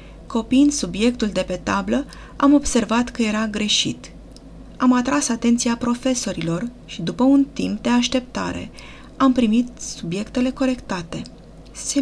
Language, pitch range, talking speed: Romanian, 200-255 Hz, 125 wpm